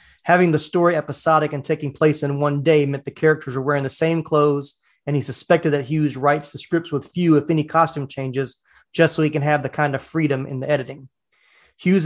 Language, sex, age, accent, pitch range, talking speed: English, male, 30-49, American, 140-160 Hz, 225 wpm